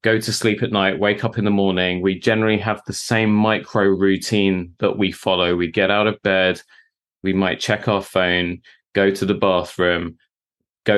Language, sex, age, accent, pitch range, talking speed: English, male, 20-39, British, 95-125 Hz, 190 wpm